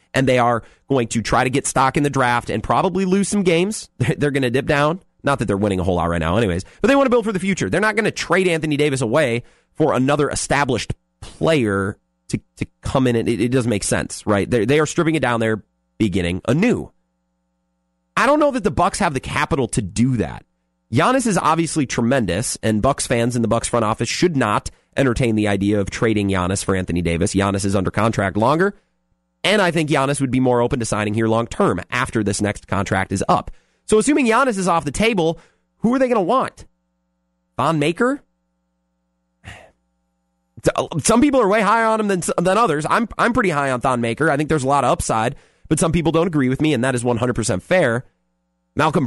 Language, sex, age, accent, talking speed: English, male, 30-49, American, 220 wpm